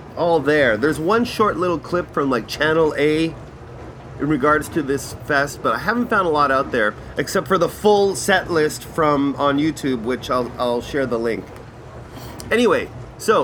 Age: 30-49